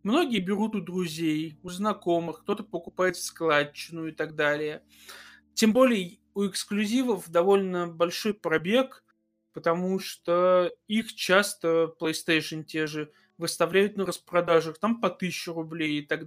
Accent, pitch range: native, 160-195 Hz